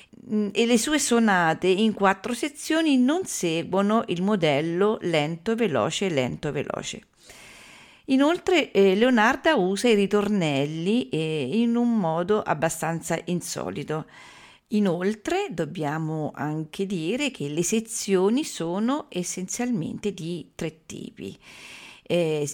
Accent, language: native, Italian